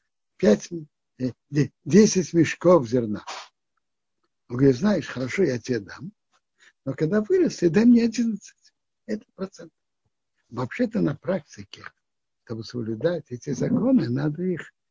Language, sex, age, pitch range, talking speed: Russian, male, 60-79, 130-190 Hz, 115 wpm